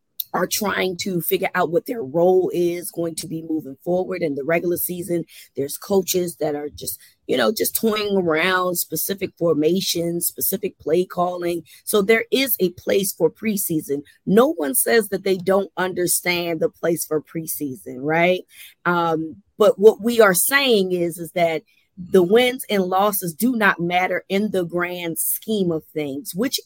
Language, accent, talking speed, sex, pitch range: English, American, 170 wpm, female, 170-225 Hz